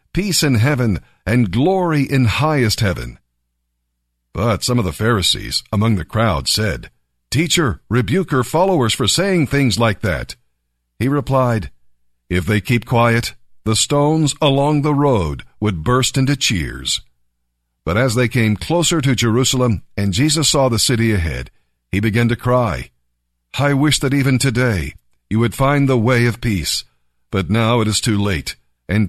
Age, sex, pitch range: 50-69, male, 85-130 Hz